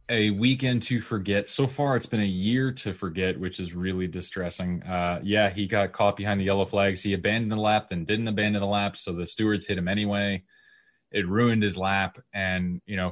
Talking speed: 215 wpm